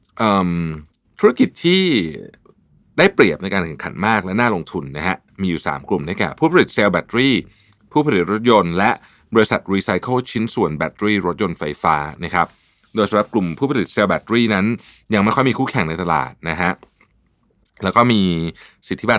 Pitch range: 85-115 Hz